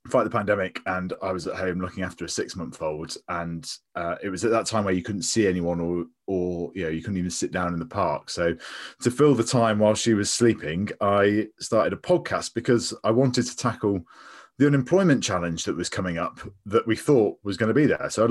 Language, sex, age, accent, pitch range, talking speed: English, male, 30-49, British, 90-120 Hz, 235 wpm